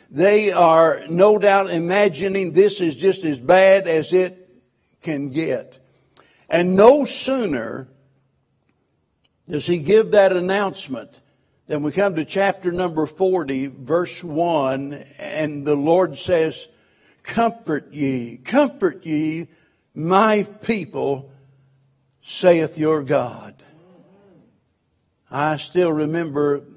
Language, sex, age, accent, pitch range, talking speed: English, male, 60-79, American, 140-175 Hz, 105 wpm